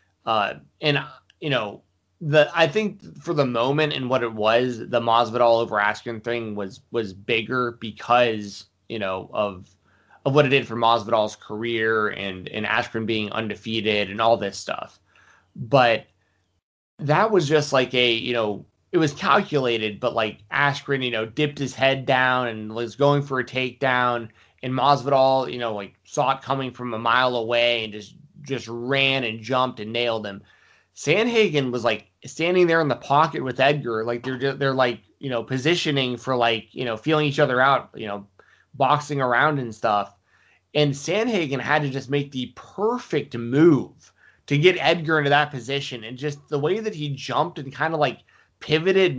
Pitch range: 115-145 Hz